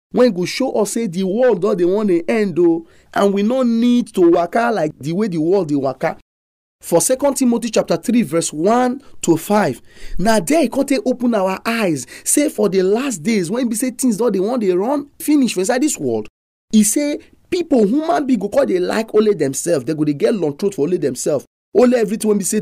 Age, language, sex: 30-49, English, male